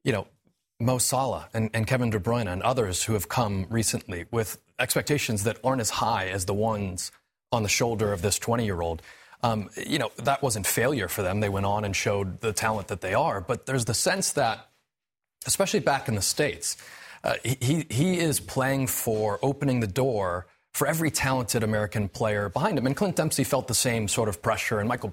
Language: English